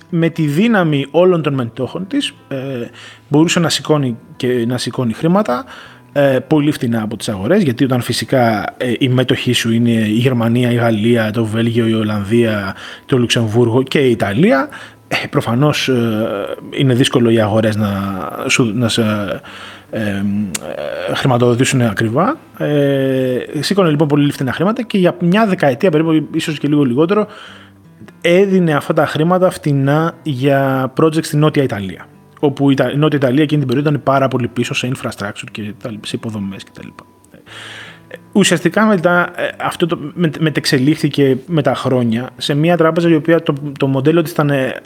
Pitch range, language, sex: 115-155 Hz, Greek, male